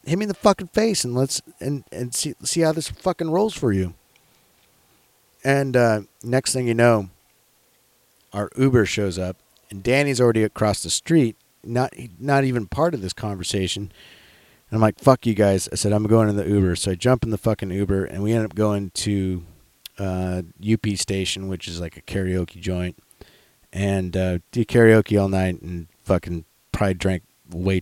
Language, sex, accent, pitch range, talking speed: English, male, American, 95-125 Hz, 190 wpm